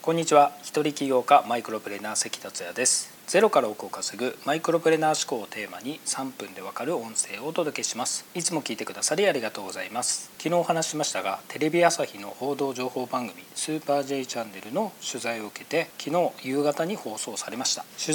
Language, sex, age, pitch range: Japanese, male, 40-59, 125-170 Hz